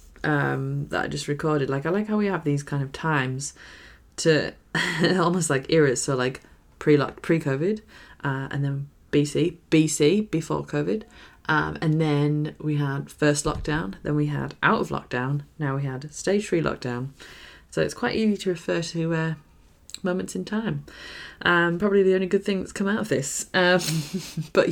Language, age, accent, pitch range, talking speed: English, 20-39, British, 140-170 Hz, 175 wpm